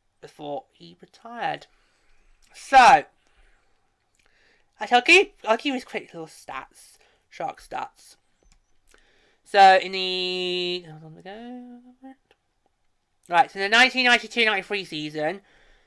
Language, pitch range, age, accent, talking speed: English, 170-245 Hz, 20-39, British, 100 wpm